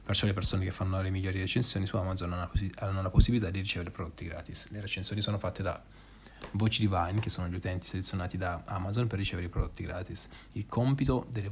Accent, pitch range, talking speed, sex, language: native, 90-105 Hz, 205 wpm, male, Italian